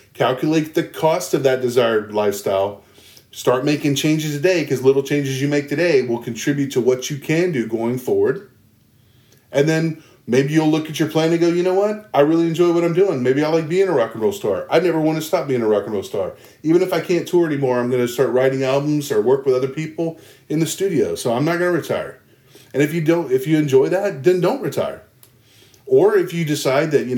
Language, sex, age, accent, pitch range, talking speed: English, male, 30-49, American, 130-165 Hz, 235 wpm